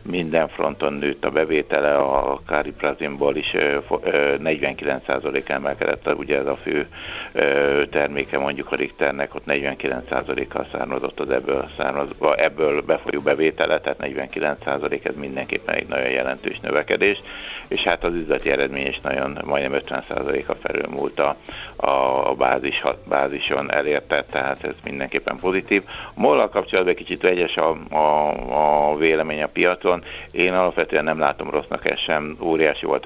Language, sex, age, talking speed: Hungarian, male, 60-79, 135 wpm